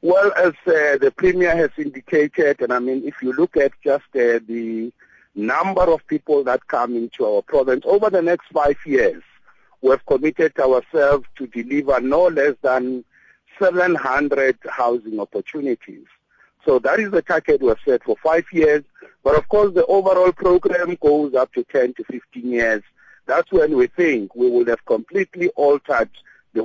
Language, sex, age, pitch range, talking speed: English, male, 50-69, 125-185 Hz, 170 wpm